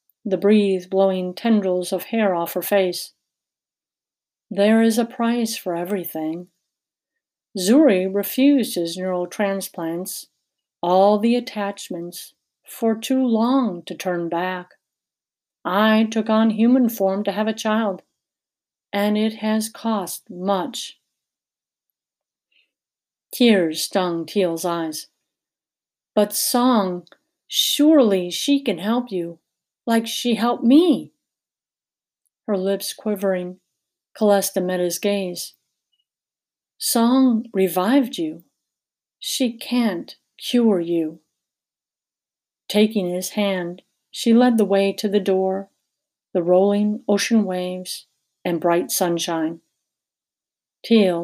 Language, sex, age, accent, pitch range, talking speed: English, female, 50-69, American, 180-230 Hz, 105 wpm